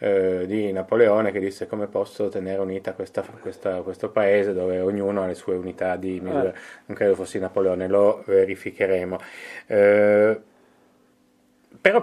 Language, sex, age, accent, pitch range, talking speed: Italian, male, 30-49, native, 100-125 Hz, 140 wpm